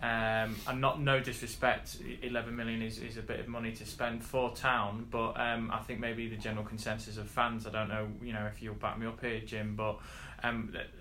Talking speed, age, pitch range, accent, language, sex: 225 wpm, 20-39, 110-120 Hz, British, English, male